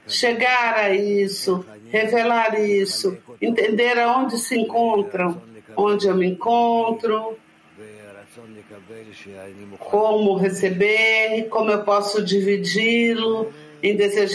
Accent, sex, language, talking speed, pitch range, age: Brazilian, female, English, 90 wpm, 180-230 Hz, 50-69